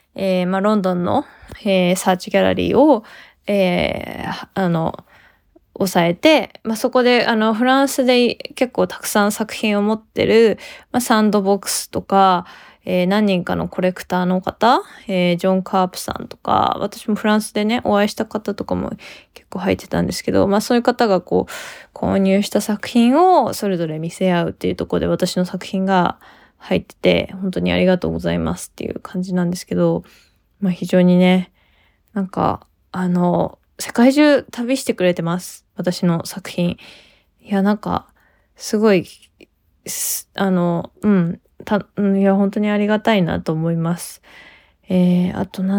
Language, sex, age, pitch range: Japanese, female, 20-39, 180-220 Hz